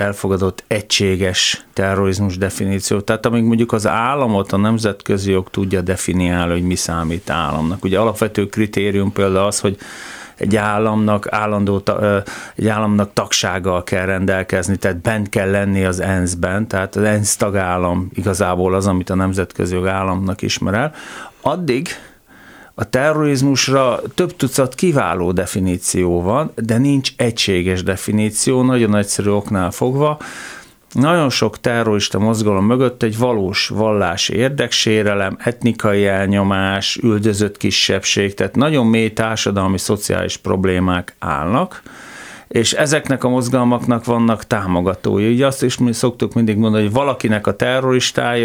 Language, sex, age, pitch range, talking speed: Hungarian, male, 40-59, 95-120 Hz, 125 wpm